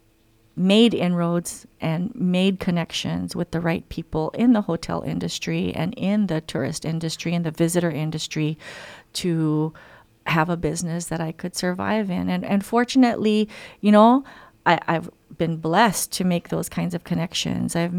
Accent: American